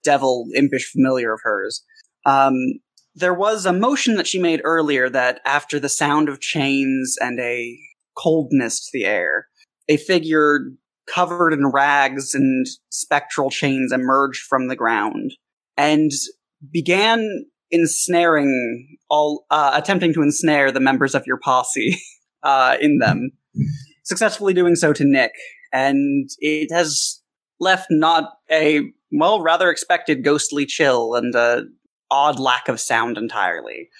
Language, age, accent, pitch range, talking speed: English, 20-39, American, 130-170 Hz, 135 wpm